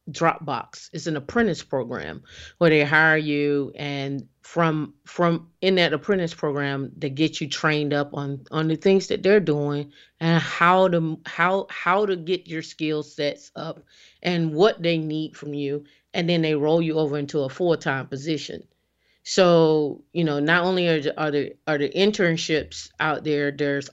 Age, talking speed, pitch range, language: 30-49, 180 wpm, 145-170 Hz, English